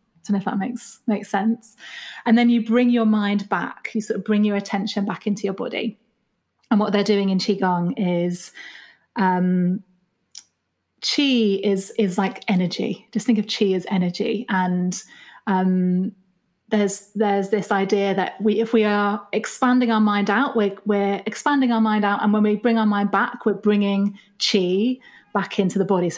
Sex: female